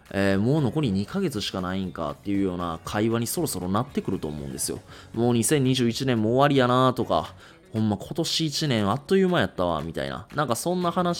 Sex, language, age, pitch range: male, Japanese, 20-39, 95-140 Hz